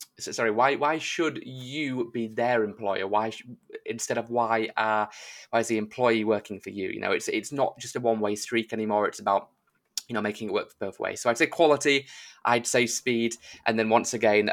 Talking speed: 225 wpm